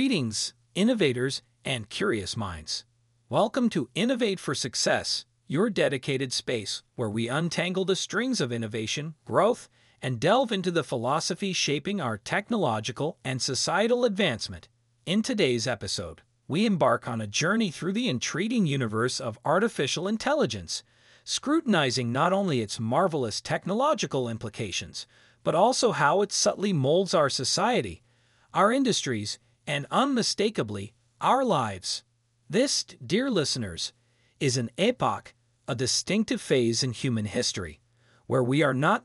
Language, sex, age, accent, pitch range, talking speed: Italian, male, 40-59, American, 120-190 Hz, 130 wpm